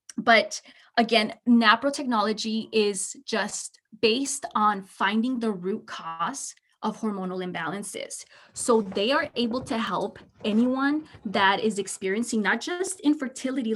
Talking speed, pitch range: 120 wpm, 205-240 Hz